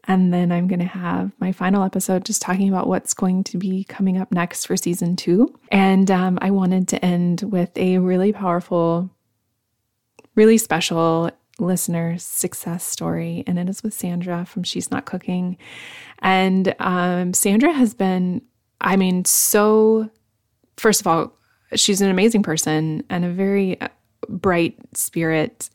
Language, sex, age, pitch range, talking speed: English, female, 20-39, 175-195 Hz, 155 wpm